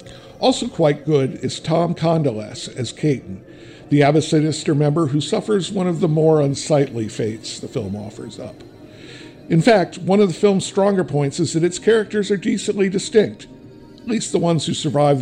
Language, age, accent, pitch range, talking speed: English, 50-69, American, 125-170 Hz, 175 wpm